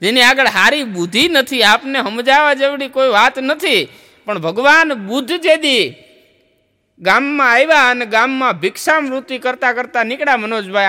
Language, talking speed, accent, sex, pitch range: Gujarati, 140 wpm, native, male, 195-265 Hz